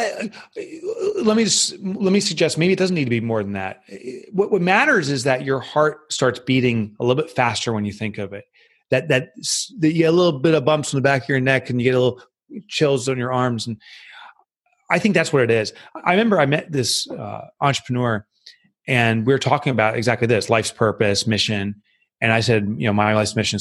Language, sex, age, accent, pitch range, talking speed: English, male, 30-49, American, 110-150 Hz, 230 wpm